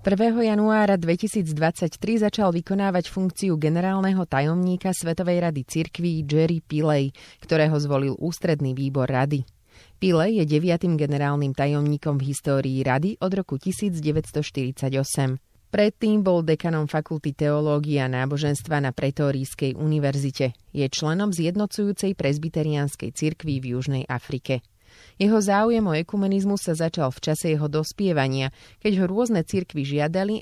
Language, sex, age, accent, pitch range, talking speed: English, female, 30-49, Czech, 135-185 Hz, 120 wpm